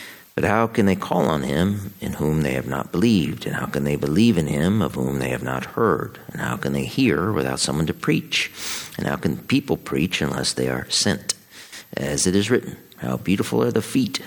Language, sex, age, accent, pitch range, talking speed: English, male, 50-69, American, 70-95 Hz, 225 wpm